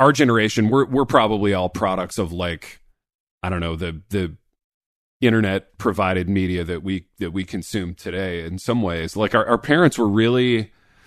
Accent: American